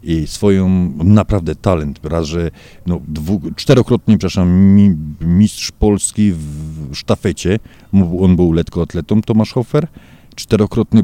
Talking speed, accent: 115 wpm, native